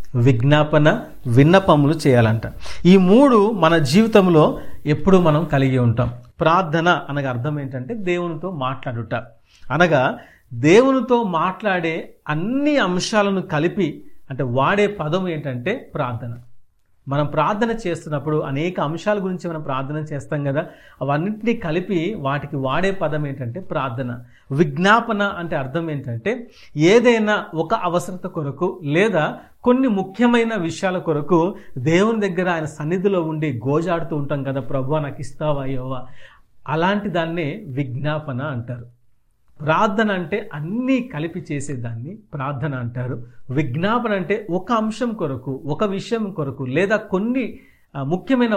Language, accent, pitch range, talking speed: Telugu, native, 140-190 Hz, 110 wpm